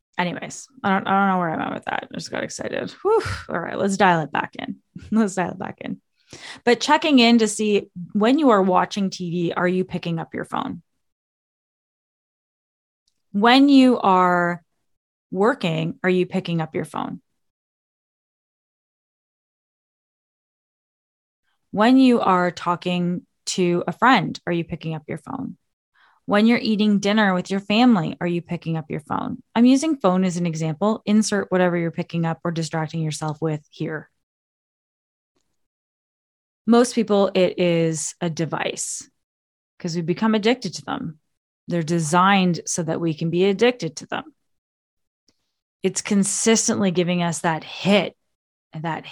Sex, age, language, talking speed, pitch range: female, 20-39, English, 150 wpm, 165-210 Hz